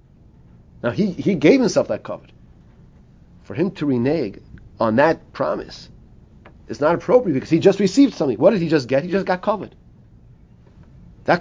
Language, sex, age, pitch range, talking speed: English, male, 40-59, 140-195 Hz, 170 wpm